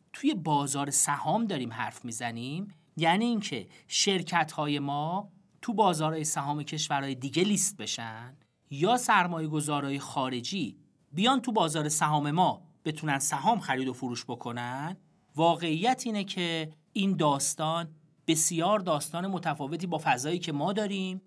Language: Persian